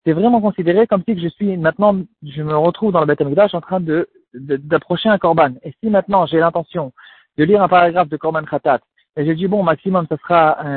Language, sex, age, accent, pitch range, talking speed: French, male, 40-59, French, 145-185 Hz, 225 wpm